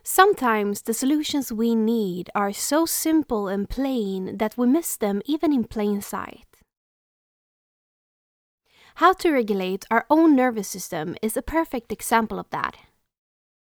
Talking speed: 135 wpm